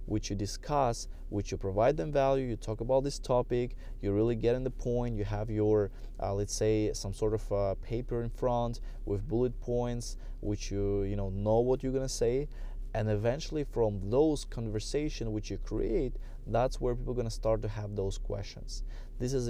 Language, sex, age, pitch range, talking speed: English, male, 20-39, 100-125 Hz, 200 wpm